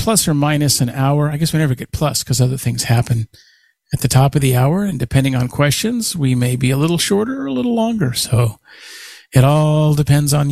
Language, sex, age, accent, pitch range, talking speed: English, male, 40-59, American, 125-150 Hz, 230 wpm